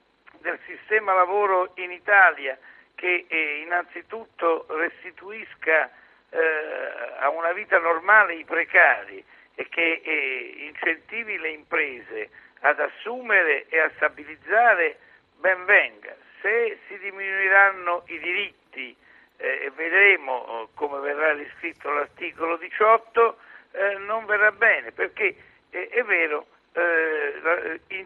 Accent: native